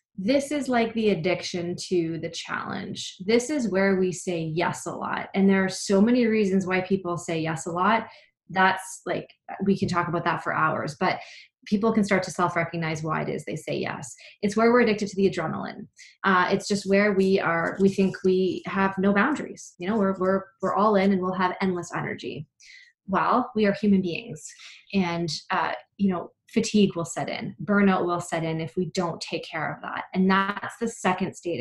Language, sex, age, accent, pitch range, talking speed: English, female, 20-39, American, 180-225 Hz, 205 wpm